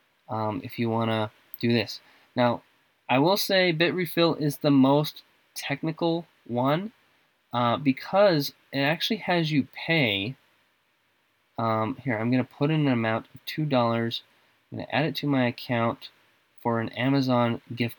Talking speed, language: 155 wpm, English